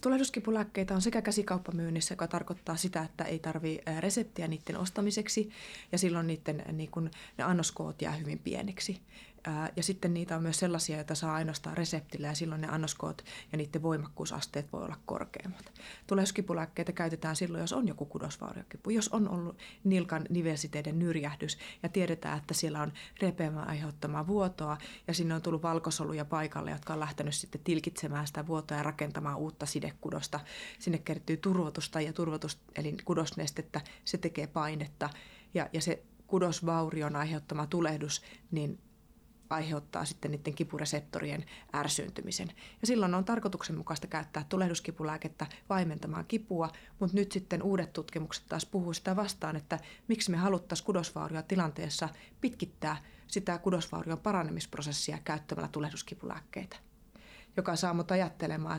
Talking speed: 140 wpm